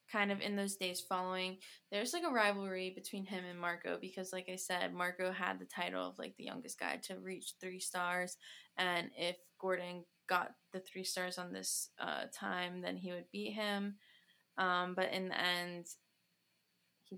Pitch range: 180-205 Hz